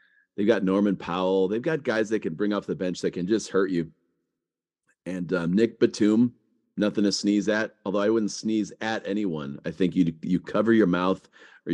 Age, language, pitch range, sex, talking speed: 40-59, English, 95-120 Hz, male, 205 wpm